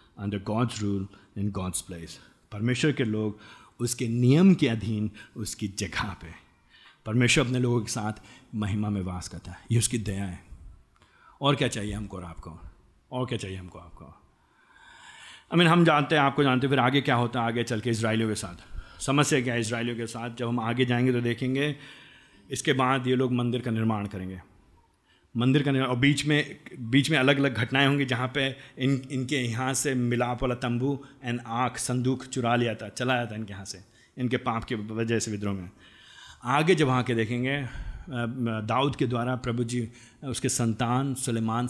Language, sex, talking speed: Hindi, male, 185 wpm